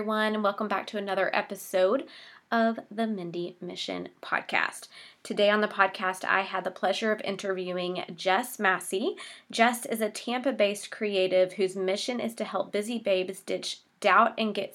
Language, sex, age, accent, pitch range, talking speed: English, female, 20-39, American, 190-230 Hz, 165 wpm